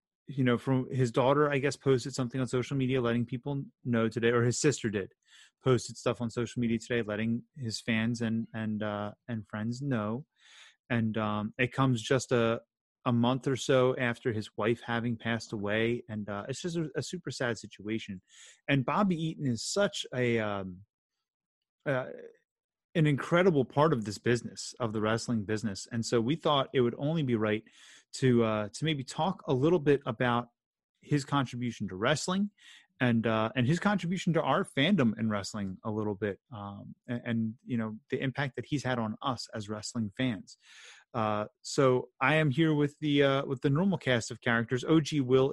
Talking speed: 190 wpm